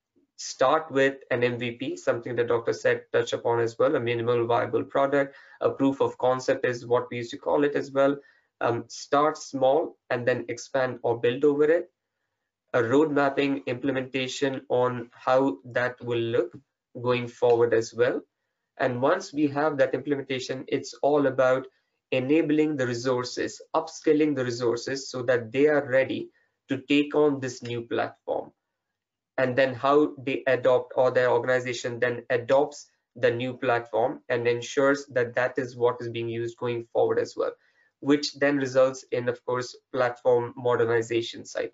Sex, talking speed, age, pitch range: male, 160 wpm, 20-39, 125-150 Hz